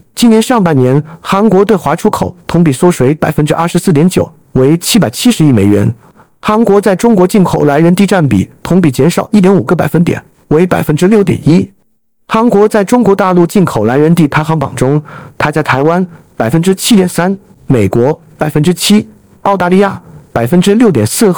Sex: male